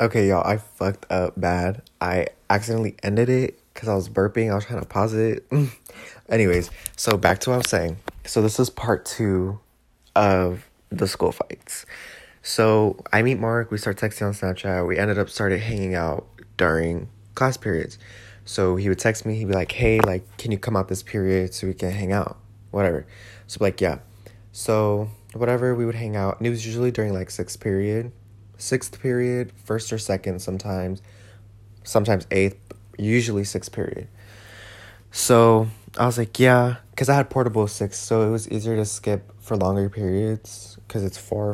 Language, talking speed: English, 180 wpm